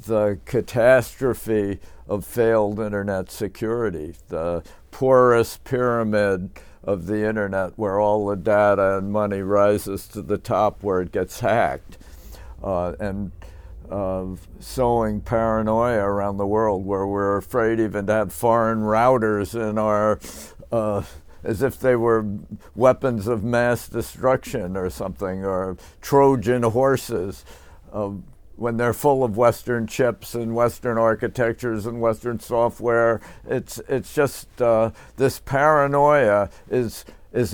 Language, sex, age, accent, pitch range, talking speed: English, male, 60-79, American, 95-115 Hz, 125 wpm